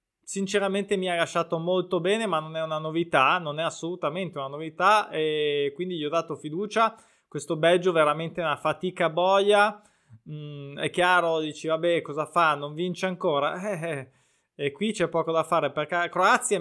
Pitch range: 160-205 Hz